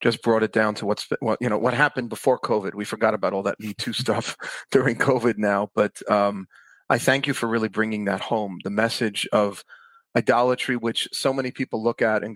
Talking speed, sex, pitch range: 225 wpm, male, 110-135 Hz